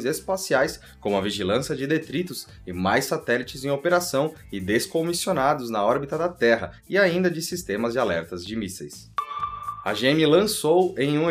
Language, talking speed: Portuguese, 160 wpm